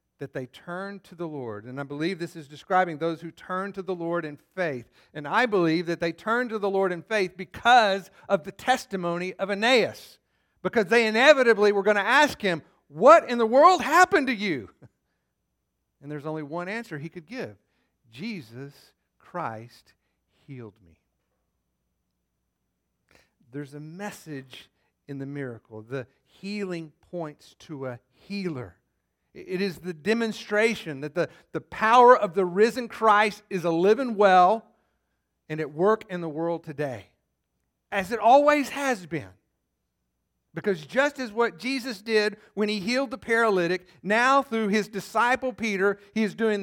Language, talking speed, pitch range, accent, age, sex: English, 160 wpm, 130-215 Hz, American, 50-69, male